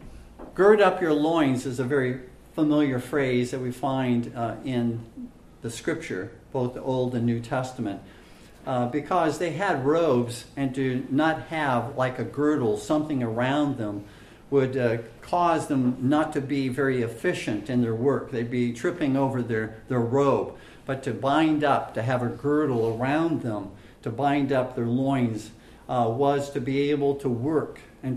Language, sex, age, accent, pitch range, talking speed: English, male, 50-69, American, 120-150 Hz, 170 wpm